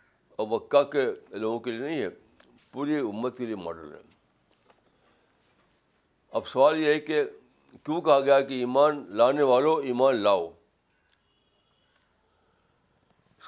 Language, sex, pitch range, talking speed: Urdu, male, 125-155 Hz, 125 wpm